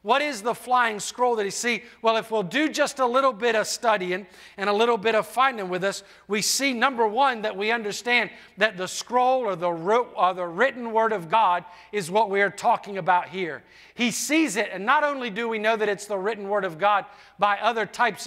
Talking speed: 225 wpm